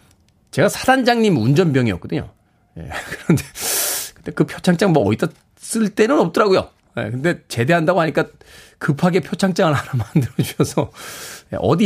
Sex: male